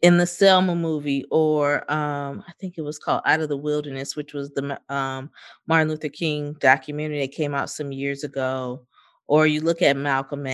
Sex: female